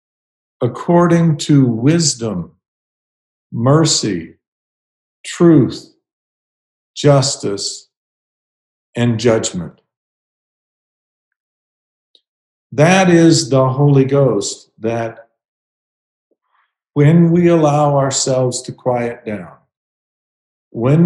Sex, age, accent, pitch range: male, 50-69, American, 120-150 Hz